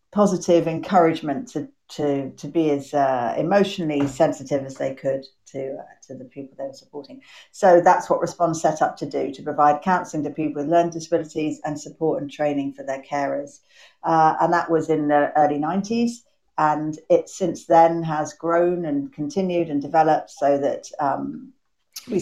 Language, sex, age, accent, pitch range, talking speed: English, female, 50-69, British, 145-175 Hz, 180 wpm